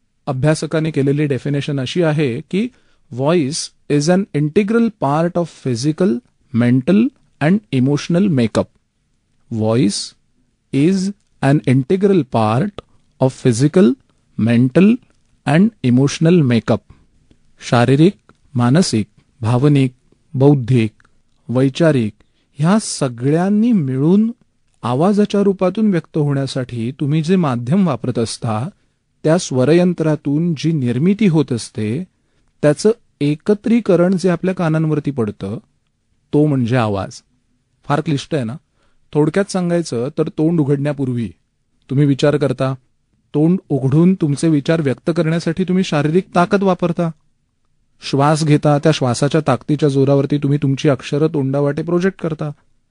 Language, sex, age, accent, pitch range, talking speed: Marathi, male, 40-59, native, 130-170 Hz, 105 wpm